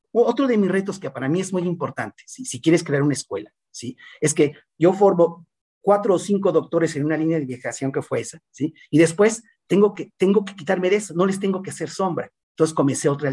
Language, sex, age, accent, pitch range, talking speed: Spanish, male, 40-59, Mexican, 135-170 Hz, 235 wpm